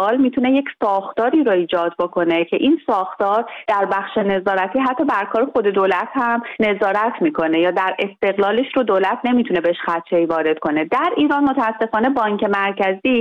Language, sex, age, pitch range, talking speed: Persian, female, 30-49, 185-240 Hz, 165 wpm